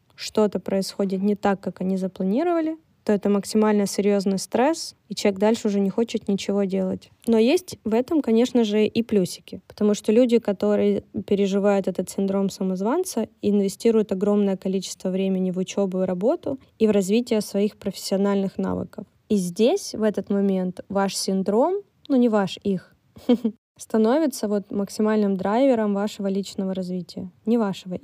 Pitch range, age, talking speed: 195-230 Hz, 20-39, 150 wpm